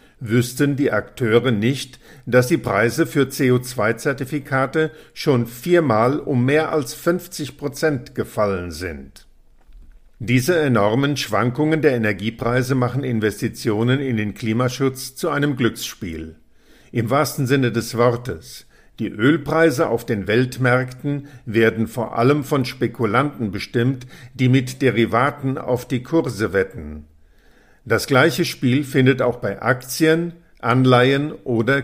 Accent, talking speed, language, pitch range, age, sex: German, 120 wpm, German, 115-145 Hz, 50-69, male